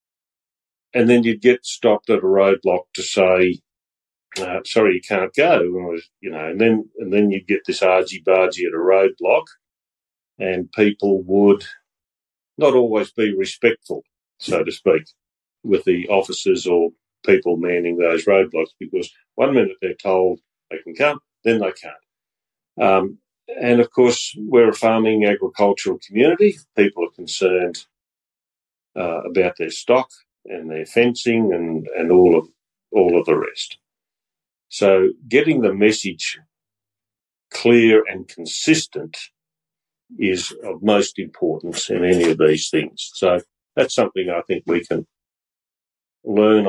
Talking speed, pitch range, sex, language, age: 135 wpm, 85-110 Hz, male, English, 40-59